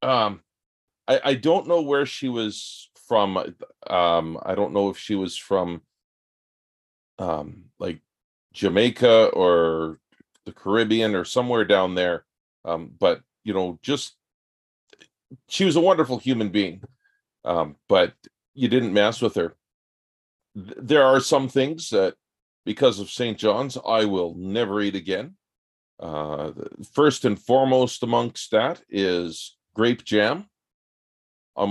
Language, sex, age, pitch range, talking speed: English, male, 40-59, 95-130 Hz, 130 wpm